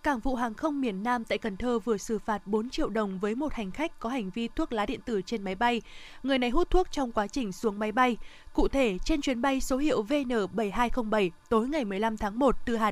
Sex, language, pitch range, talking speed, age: female, Vietnamese, 215-270 Hz, 250 wpm, 20-39